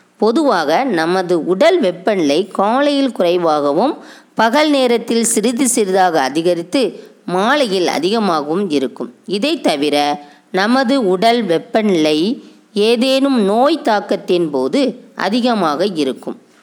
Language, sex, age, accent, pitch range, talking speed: Tamil, female, 20-39, native, 175-250 Hz, 90 wpm